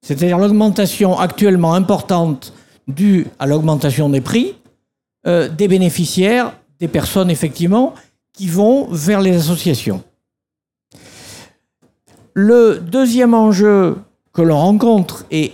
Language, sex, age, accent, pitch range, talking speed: French, male, 50-69, French, 165-220 Hz, 105 wpm